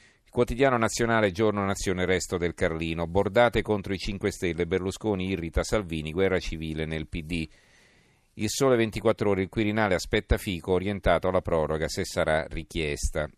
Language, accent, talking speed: Italian, native, 150 wpm